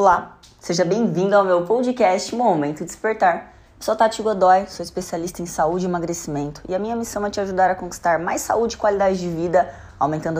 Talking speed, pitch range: 195 wpm, 150-210 Hz